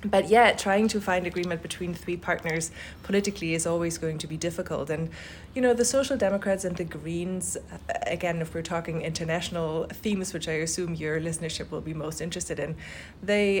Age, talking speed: 20-39, 185 wpm